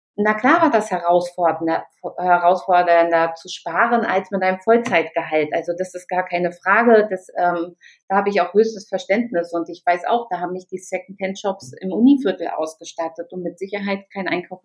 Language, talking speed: German, 180 wpm